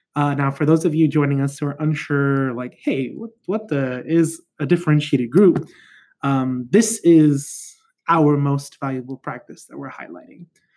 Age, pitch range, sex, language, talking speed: 20-39, 135-155 Hz, male, English, 165 wpm